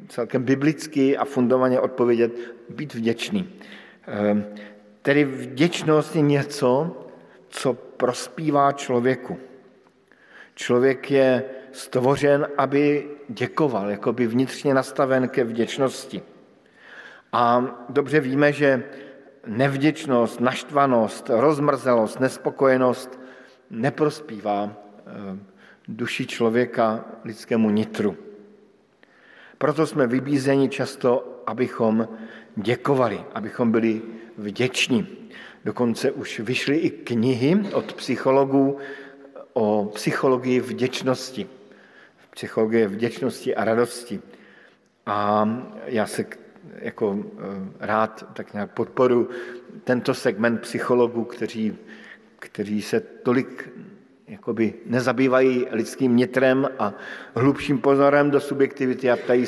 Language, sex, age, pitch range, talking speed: Slovak, male, 50-69, 115-140 Hz, 85 wpm